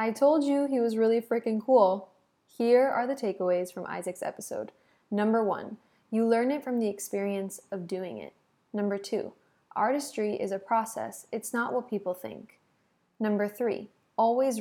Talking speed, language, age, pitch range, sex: 165 wpm, English, 20-39, 195-230 Hz, female